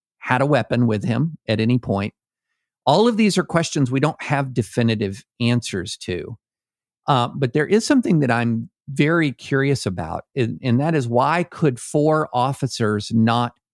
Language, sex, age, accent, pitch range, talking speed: English, male, 50-69, American, 105-135 Hz, 165 wpm